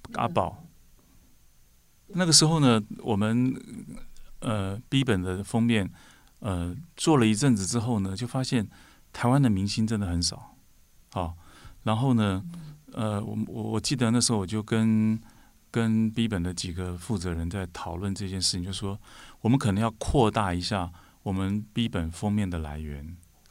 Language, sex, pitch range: Chinese, male, 90-115 Hz